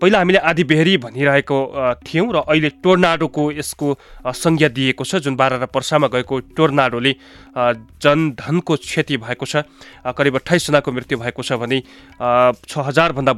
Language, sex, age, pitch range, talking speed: English, male, 20-39, 130-165 Hz, 140 wpm